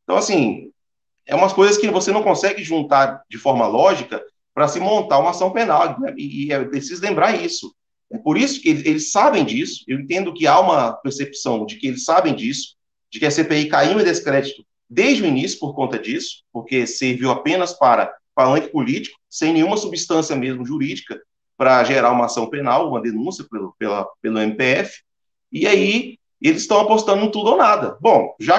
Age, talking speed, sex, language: 30-49, 185 wpm, male, Portuguese